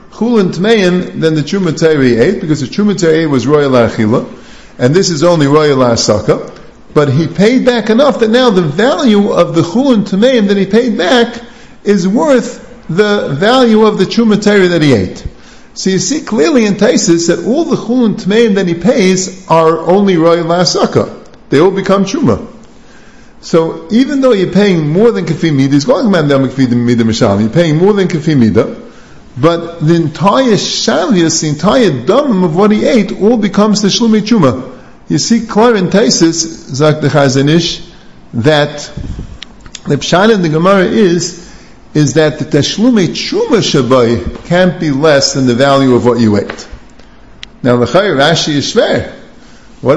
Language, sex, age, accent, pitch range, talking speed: English, male, 50-69, American, 150-215 Hz, 155 wpm